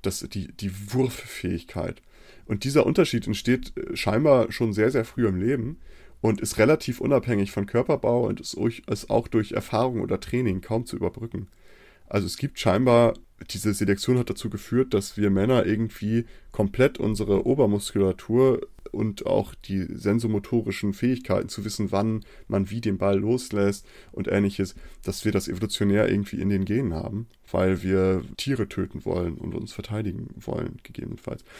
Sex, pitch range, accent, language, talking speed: male, 100-120 Hz, German, German, 150 wpm